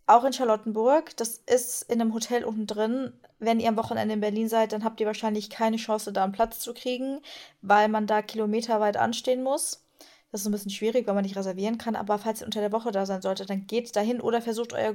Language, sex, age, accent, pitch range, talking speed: German, female, 20-39, German, 210-235 Hz, 235 wpm